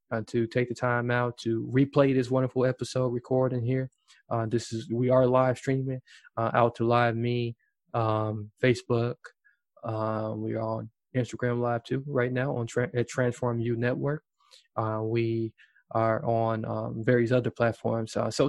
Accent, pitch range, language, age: American, 115-145 Hz, English, 20-39